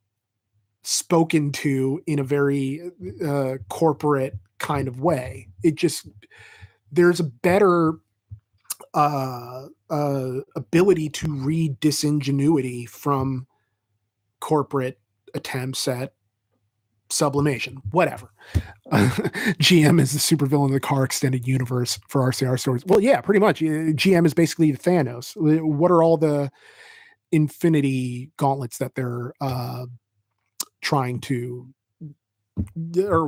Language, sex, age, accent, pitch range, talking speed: English, male, 30-49, American, 125-160 Hz, 110 wpm